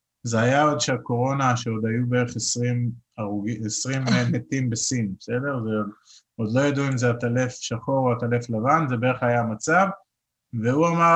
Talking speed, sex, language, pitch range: 155 wpm, male, Hebrew, 120-155 Hz